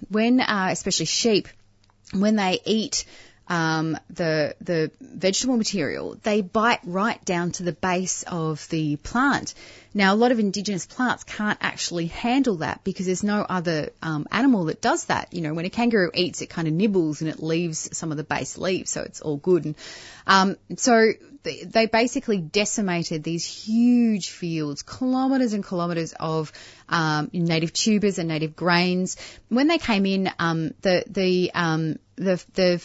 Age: 30-49